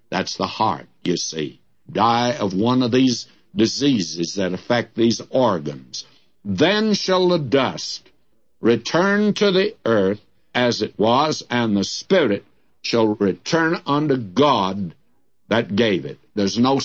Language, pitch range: English, 115-150 Hz